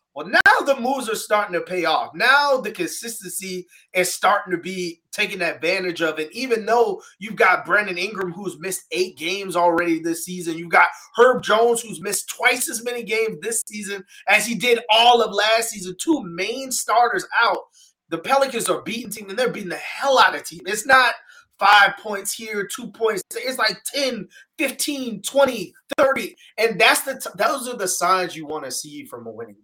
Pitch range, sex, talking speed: 175-240 Hz, male, 190 wpm